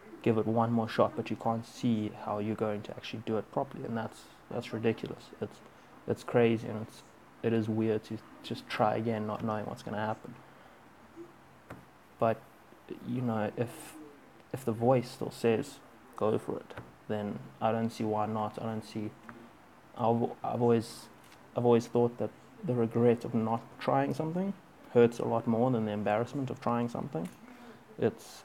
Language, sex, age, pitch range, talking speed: English, male, 20-39, 110-120 Hz, 180 wpm